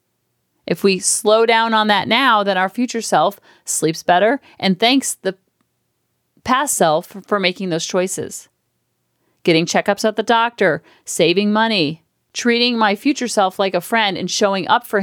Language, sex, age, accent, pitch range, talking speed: English, female, 40-59, American, 185-230 Hz, 165 wpm